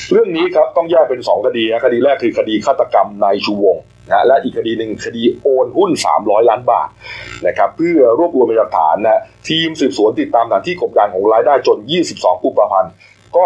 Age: 30-49